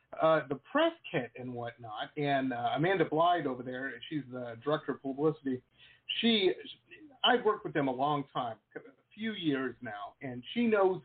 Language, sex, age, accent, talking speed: English, male, 40-59, American, 180 wpm